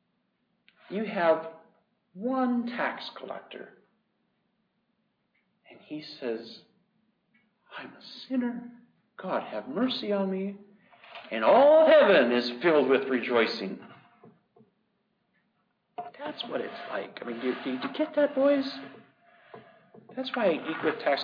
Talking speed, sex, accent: 115 wpm, male, American